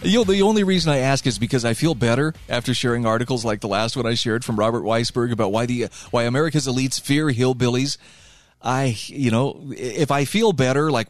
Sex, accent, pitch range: male, American, 115-150 Hz